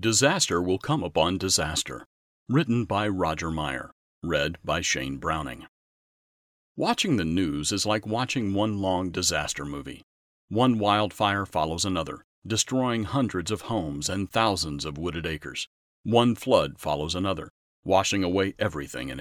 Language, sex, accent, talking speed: English, male, American, 135 wpm